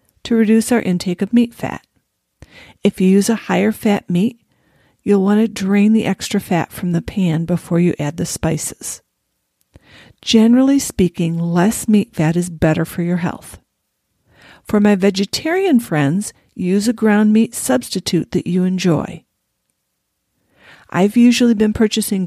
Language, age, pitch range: English, 50-69, 180-225 Hz